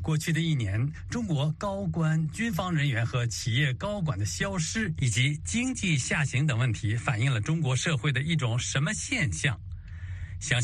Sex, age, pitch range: male, 60-79, 105-155 Hz